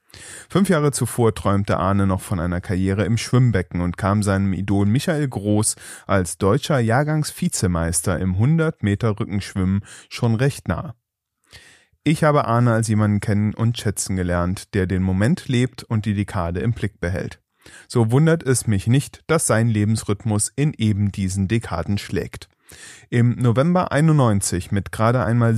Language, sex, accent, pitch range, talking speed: German, male, German, 100-130 Hz, 150 wpm